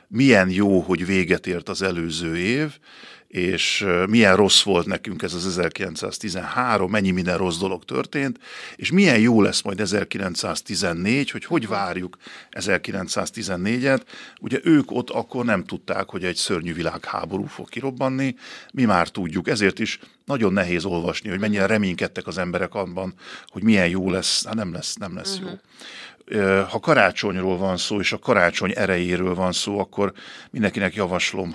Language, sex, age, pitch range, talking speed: Hungarian, male, 50-69, 90-110 Hz, 150 wpm